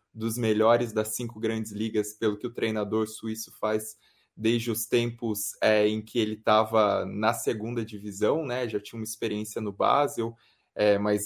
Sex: male